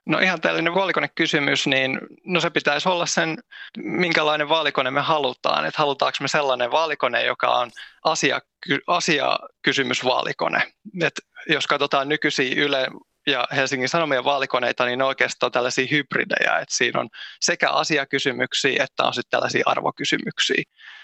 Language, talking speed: Finnish, 130 wpm